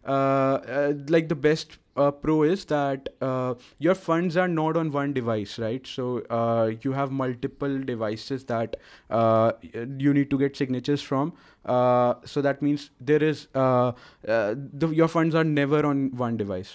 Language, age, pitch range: English, 20-39, 130-155 Hz